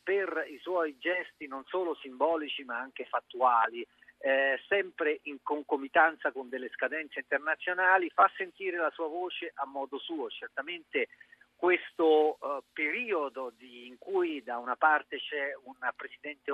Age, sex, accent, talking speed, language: 50-69, male, native, 135 wpm, Italian